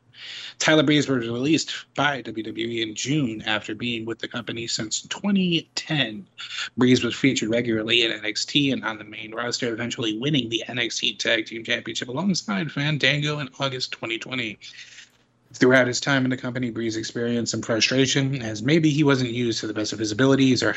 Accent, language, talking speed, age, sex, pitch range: American, English, 175 wpm, 30-49, male, 115-135 Hz